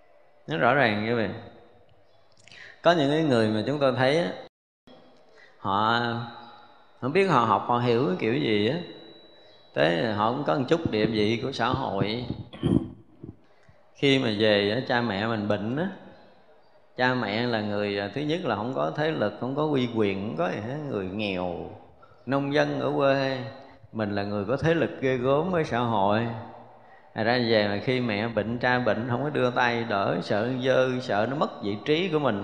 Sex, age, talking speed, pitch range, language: male, 20-39, 190 wpm, 110-135 Hz, Vietnamese